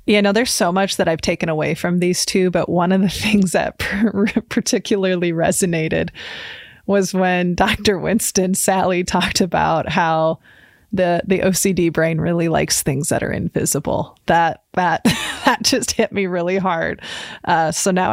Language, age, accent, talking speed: English, 20-39, American, 170 wpm